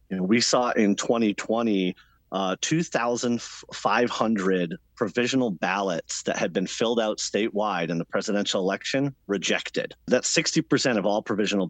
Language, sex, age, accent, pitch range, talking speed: English, male, 40-59, American, 100-125 Hz, 130 wpm